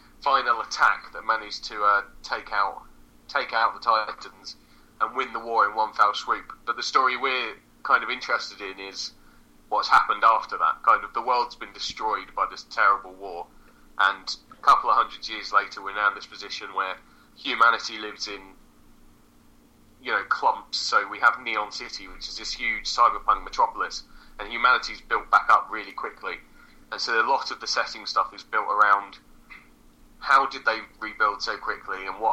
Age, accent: 20-39, British